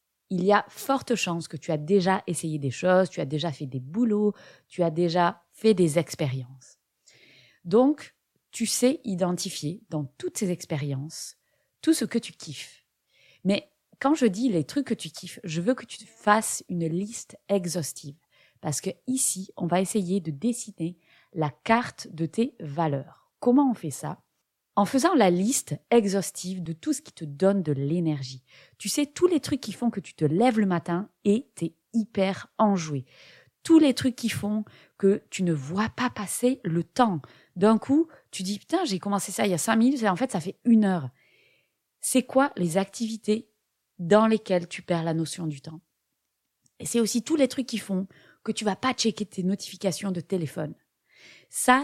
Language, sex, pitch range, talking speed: French, female, 165-225 Hz, 190 wpm